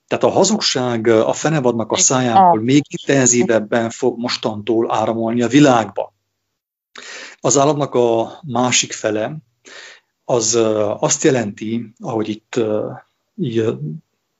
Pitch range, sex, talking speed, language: 115-135 Hz, male, 105 wpm, English